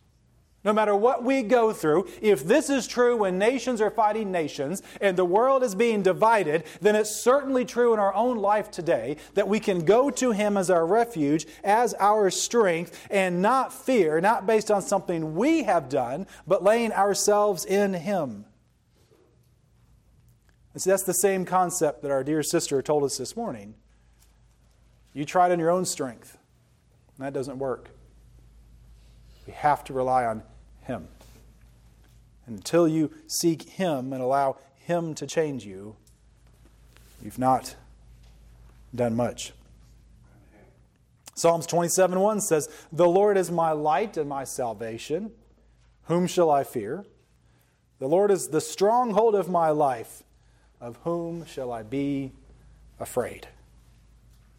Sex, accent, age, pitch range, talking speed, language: male, American, 40-59, 135-200 Hz, 145 wpm, English